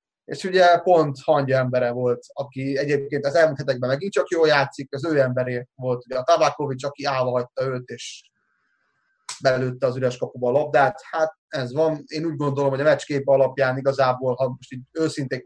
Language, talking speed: Hungarian, 185 wpm